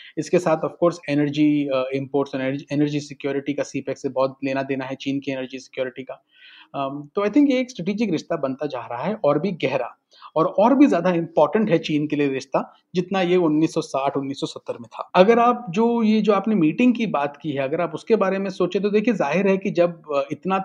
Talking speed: 205 wpm